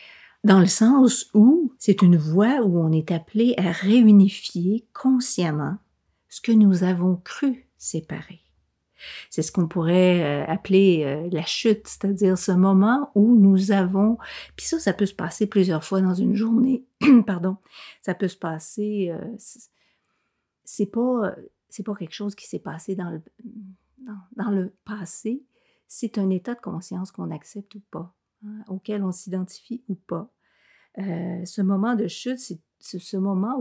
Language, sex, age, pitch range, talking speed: French, female, 50-69, 180-220 Hz, 155 wpm